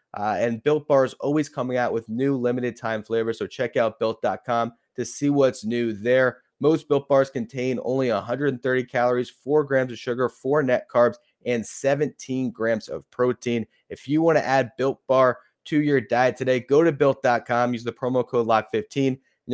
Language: English